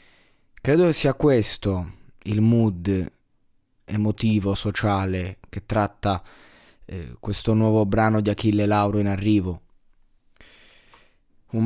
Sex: male